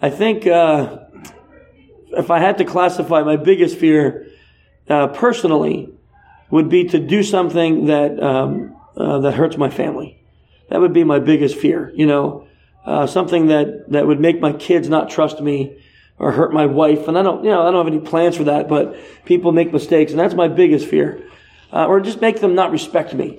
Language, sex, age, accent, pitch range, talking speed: Croatian, male, 40-59, American, 150-185 Hz, 200 wpm